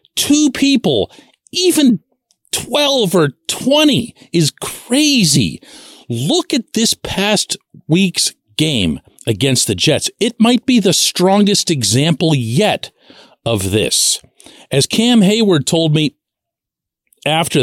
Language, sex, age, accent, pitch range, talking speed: English, male, 50-69, American, 170-270 Hz, 110 wpm